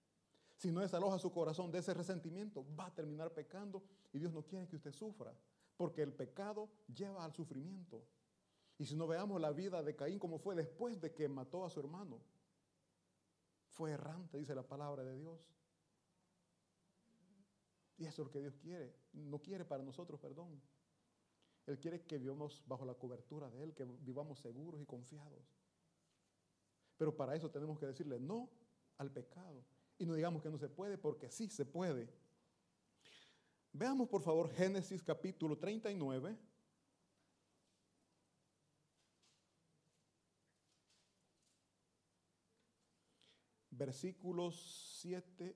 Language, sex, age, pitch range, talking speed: Italian, male, 40-59, 145-185 Hz, 135 wpm